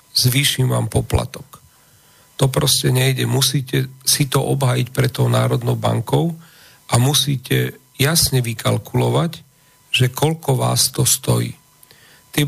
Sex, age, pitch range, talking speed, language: male, 40-59, 125-140 Hz, 115 wpm, Slovak